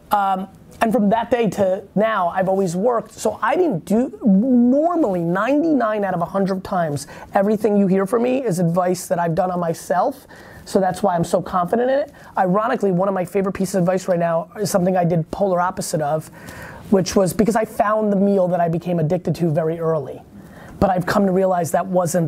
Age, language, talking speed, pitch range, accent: 20-39, English, 210 wpm, 170-195 Hz, American